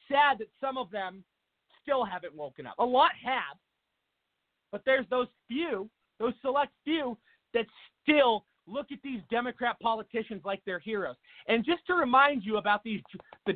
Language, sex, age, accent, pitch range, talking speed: English, male, 40-59, American, 210-265 Hz, 165 wpm